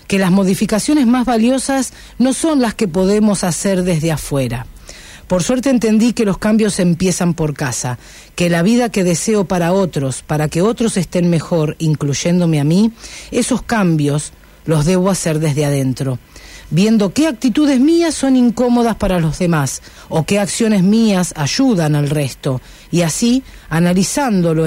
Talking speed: 155 wpm